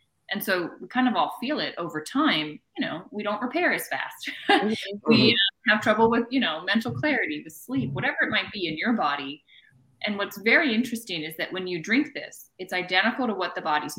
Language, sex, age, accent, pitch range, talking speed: English, female, 20-39, American, 165-230 Hz, 215 wpm